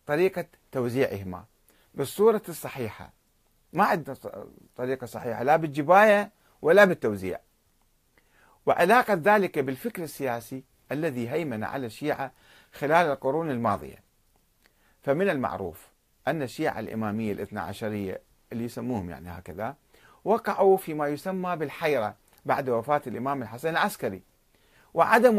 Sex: male